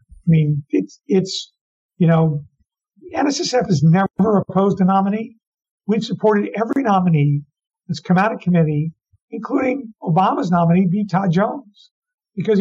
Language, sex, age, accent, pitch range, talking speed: English, male, 50-69, American, 165-215 Hz, 135 wpm